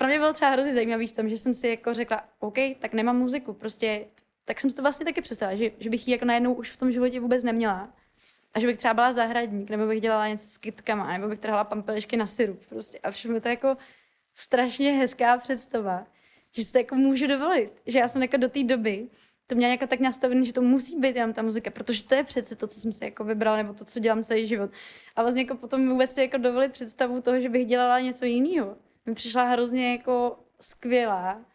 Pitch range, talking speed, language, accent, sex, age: 225-255 Hz, 235 wpm, Czech, native, female, 20-39